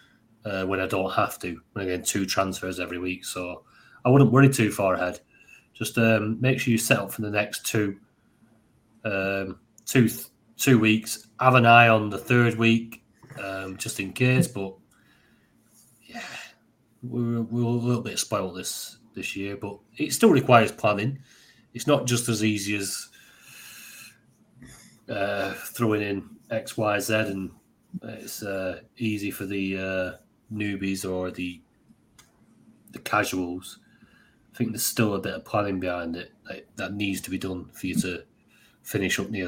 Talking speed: 160 wpm